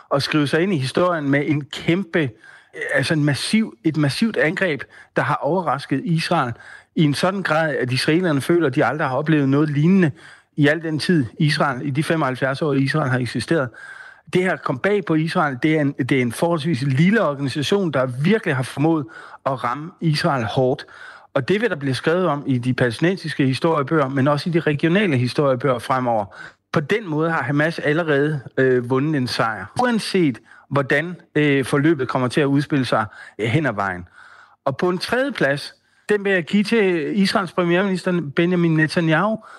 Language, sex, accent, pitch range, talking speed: Danish, male, native, 140-180 Hz, 180 wpm